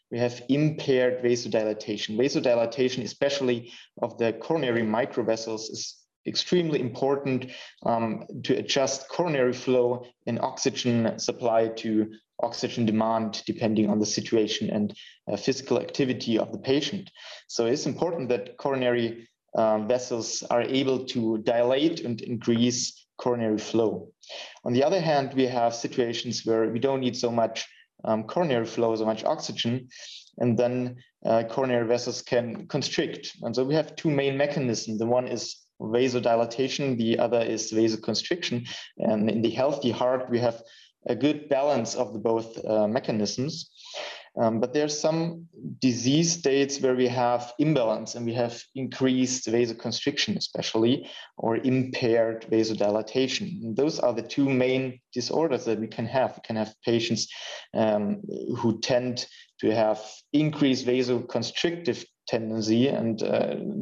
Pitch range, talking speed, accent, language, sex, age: 115-130 Hz, 140 wpm, German, English, male, 30-49